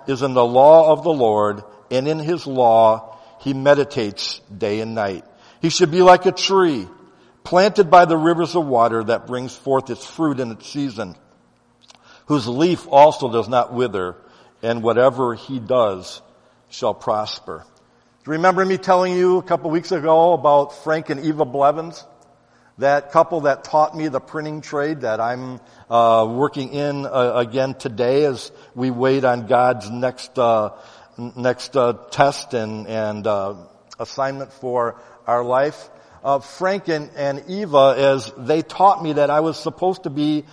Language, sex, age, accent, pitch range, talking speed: English, male, 60-79, American, 125-170 Hz, 165 wpm